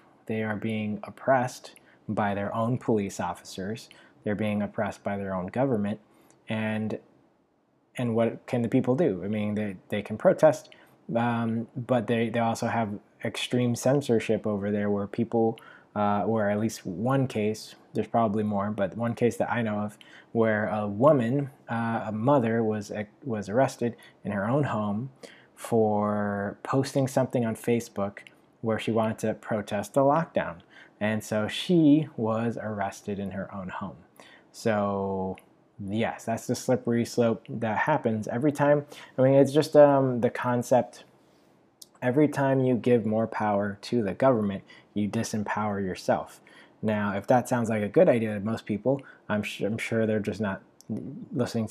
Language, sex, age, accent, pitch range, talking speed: English, male, 20-39, American, 105-125 Hz, 160 wpm